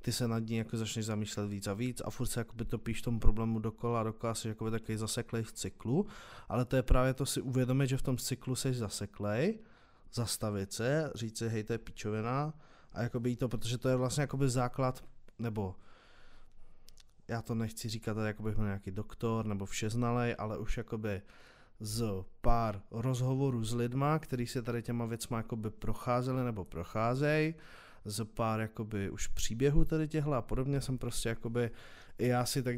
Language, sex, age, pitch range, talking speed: Czech, male, 20-39, 110-130 Hz, 180 wpm